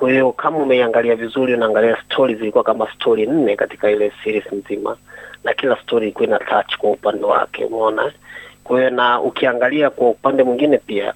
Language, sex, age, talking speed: Swahili, male, 30-49, 165 wpm